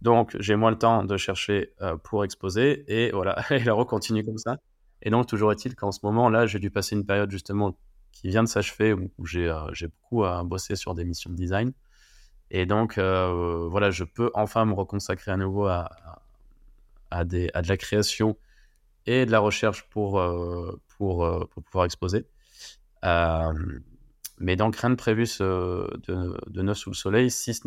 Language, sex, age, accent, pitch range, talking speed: French, male, 20-39, French, 95-115 Hz, 200 wpm